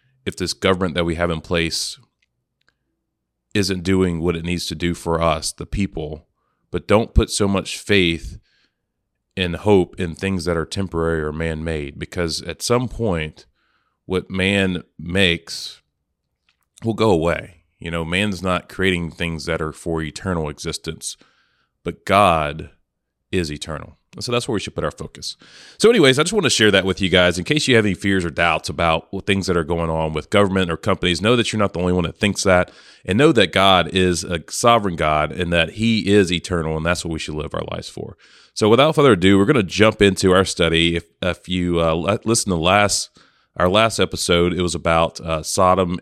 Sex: male